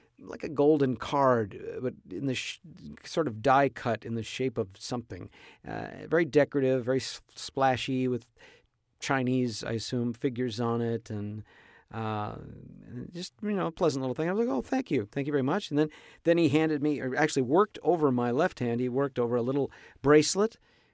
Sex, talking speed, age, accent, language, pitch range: male, 190 wpm, 50-69, American, English, 115-140 Hz